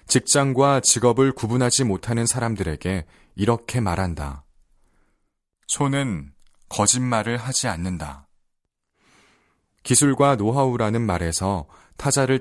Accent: native